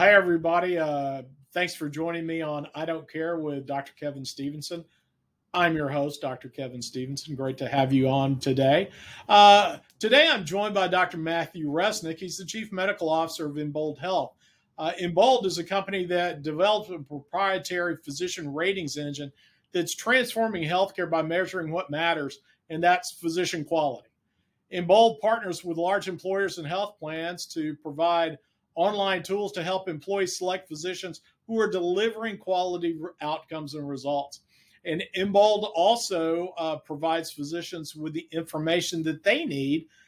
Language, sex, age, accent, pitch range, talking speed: English, male, 50-69, American, 155-185 Hz, 155 wpm